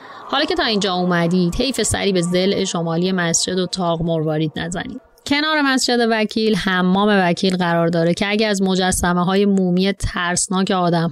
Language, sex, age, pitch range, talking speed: Persian, female, 30-49, 175-220 Hz, 155 wpm